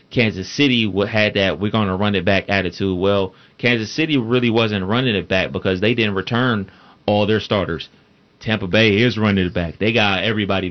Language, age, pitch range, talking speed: English, 30-49, 100-120 Hz, 195 wpm